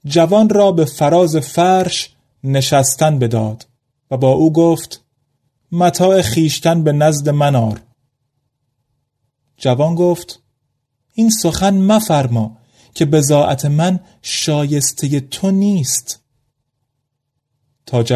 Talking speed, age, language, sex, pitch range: 95 wpm, 30-49, Persian, male, 130-170 Hz